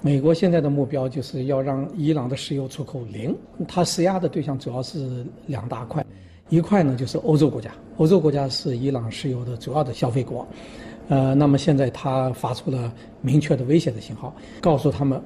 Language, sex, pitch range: Chinese, male, 125-160 Hz